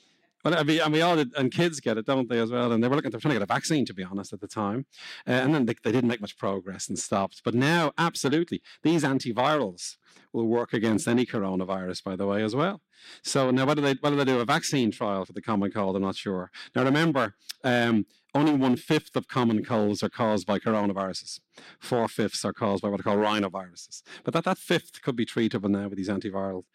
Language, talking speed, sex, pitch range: English, 240 wpm, male, 100-135 Hz